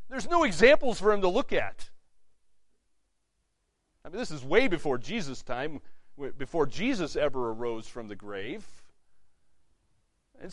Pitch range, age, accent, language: 125-195 Hz, 40-59, American, English